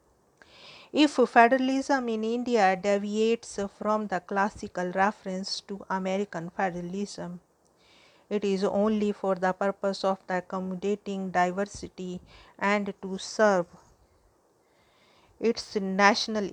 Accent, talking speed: Indian, 95 wpm